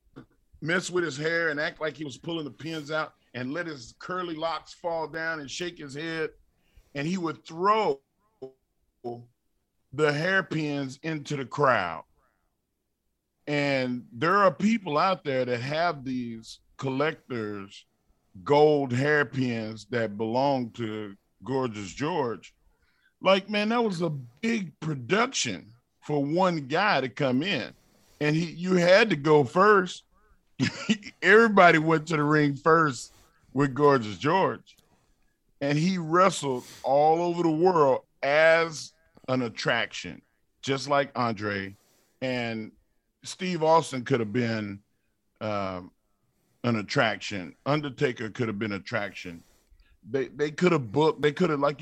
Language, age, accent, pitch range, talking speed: English, 40-59, American, 120-165 Hz, 135 wpm